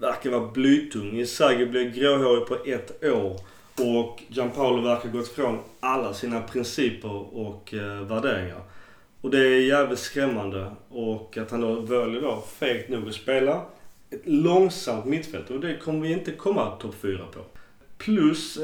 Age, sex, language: 30-49, male, Swedish